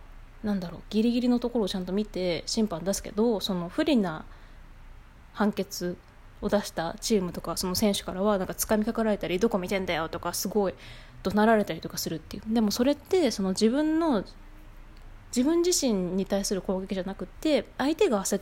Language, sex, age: Japanese, female, 20-39